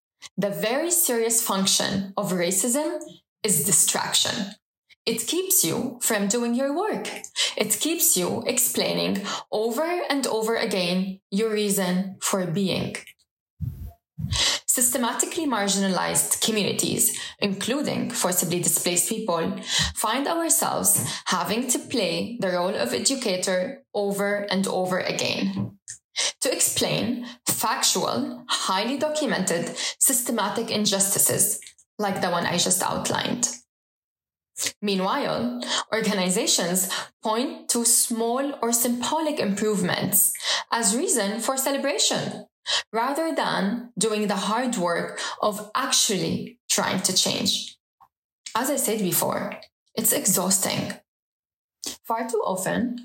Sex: female